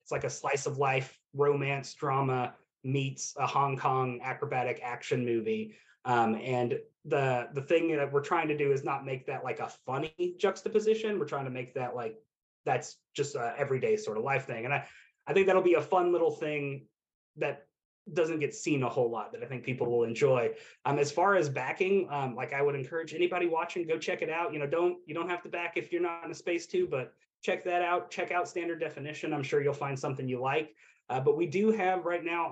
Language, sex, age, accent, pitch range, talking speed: English, male, 30-49, American, 130-170 Hz, 225 wpm